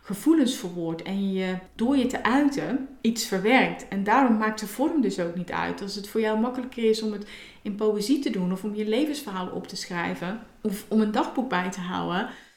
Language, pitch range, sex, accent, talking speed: Dutch, 195-240 Hz, female, Dutch, 215 wpm